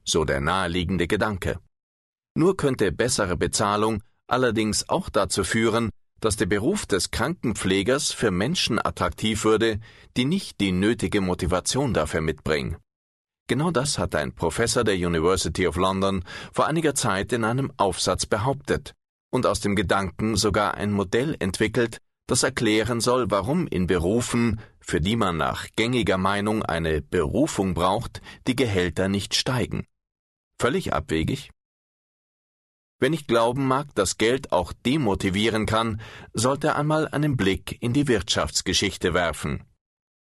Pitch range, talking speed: 95-115 Hz, 135 wpm